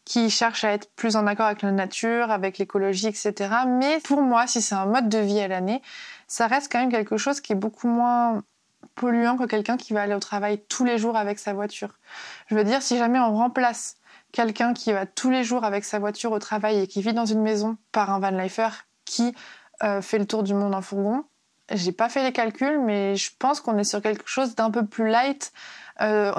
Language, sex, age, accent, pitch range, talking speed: French, female, 20-39, French, 205-240 Hz, 235 wpm